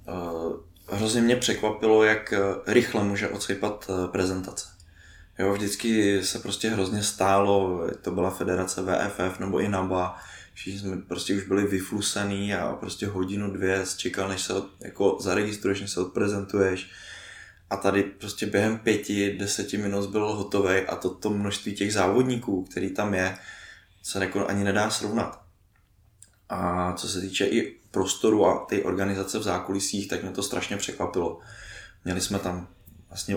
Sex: male